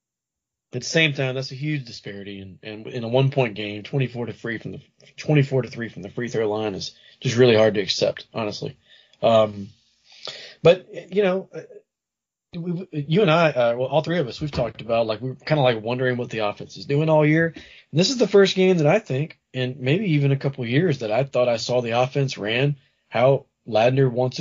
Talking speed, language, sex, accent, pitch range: 220 wpm, English, male, American, 115-145 Hz